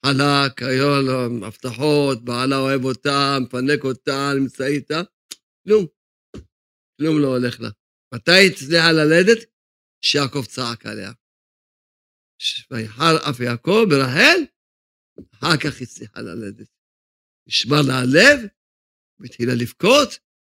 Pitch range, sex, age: 125-170 Hz, male, 50-69